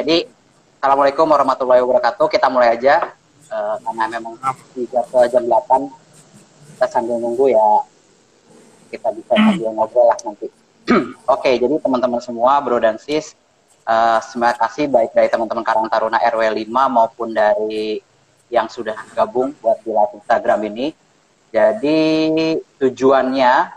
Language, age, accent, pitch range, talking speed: Indonesian, 30-49, native, 120-155 Hz, 125 wpm